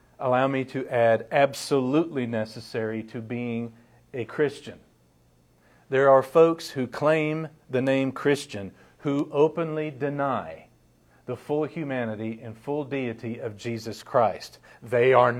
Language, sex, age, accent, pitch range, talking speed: English, male, 50-69, American, 115-155 Hz, 125 wpm